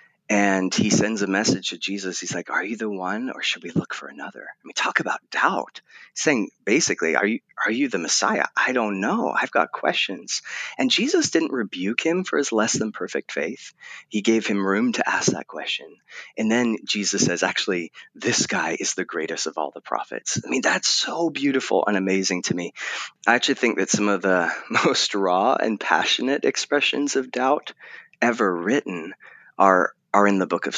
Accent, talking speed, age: American, 200 wpm, 30-49